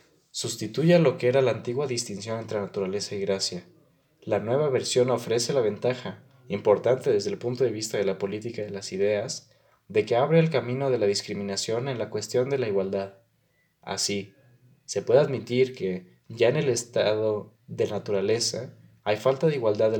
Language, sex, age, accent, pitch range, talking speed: Spanish, male, 20-39, Mexican, 100-130 Hz, 180 wpm